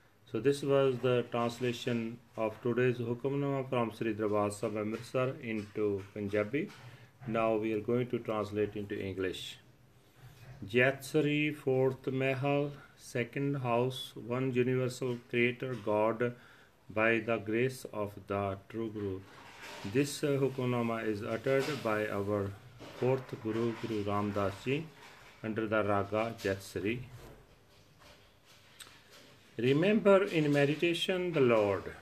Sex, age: male, 40-59